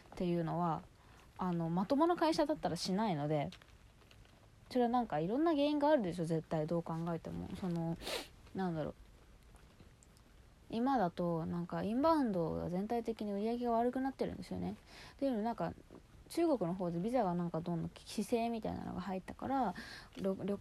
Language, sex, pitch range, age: Japanese, female, 175-255 Hz, 20-39